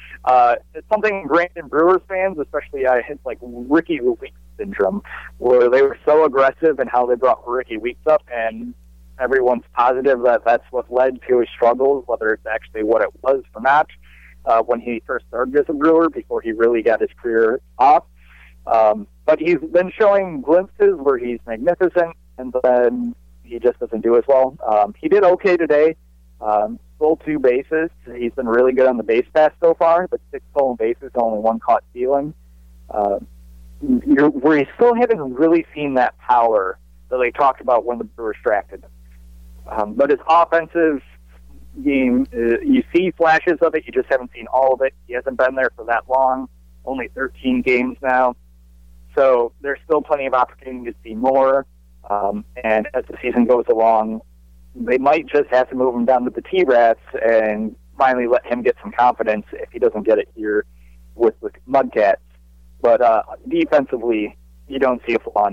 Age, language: 30-49, English